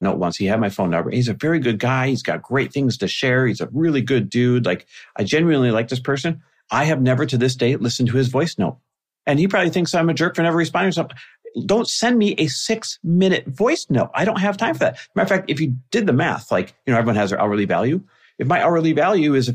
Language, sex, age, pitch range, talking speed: English, male, 50-69, 115-160 Hz, 270 wpm